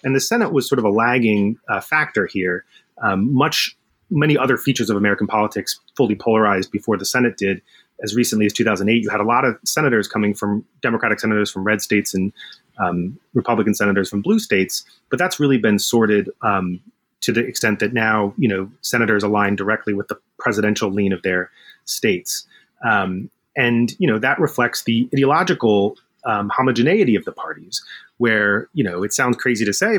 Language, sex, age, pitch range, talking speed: English, male, 30-49, 105-125 Hz, 185 wpm